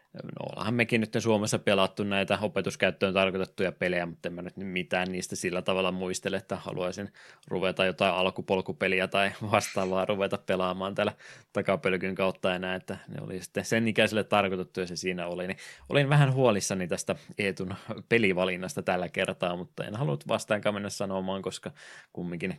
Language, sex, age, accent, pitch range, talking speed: Finnish, male, 20-39, native, 95-105 Hz, 155 wpm